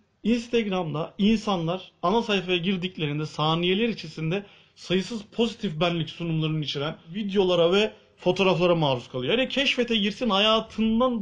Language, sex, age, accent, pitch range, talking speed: Turkish, male, 40-59, native, 155-210 Hz, 110 wpm